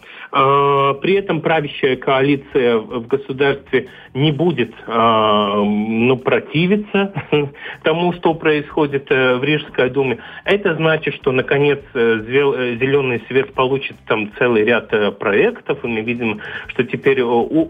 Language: Russian